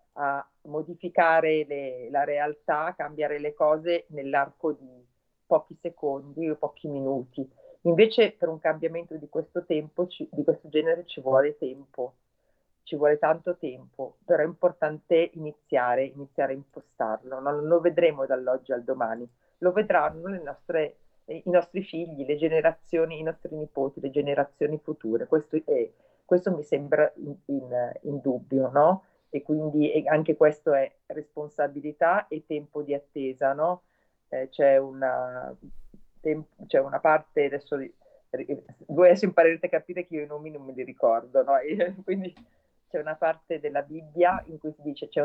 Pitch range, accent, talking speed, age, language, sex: 140-175 Hz, native, 155 wpm, 40-59, Italian, female